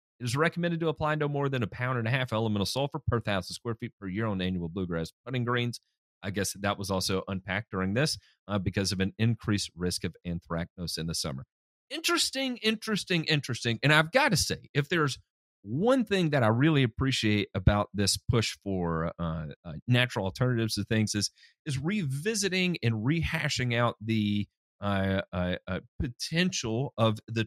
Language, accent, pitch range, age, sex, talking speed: English, American, 90-120 Hz, 40-59, male, 185 wpm